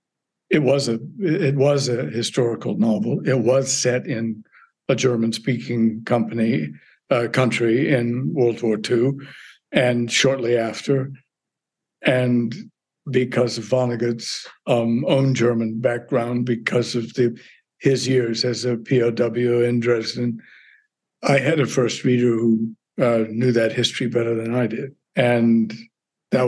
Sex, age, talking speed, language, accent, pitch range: male, 60-79, 130 wpm, English, American, 115-135 Hz